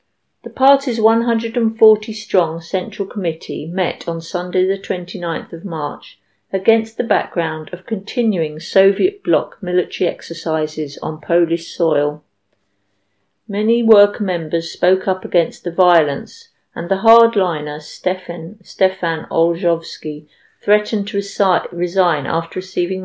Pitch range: 165-210 Hz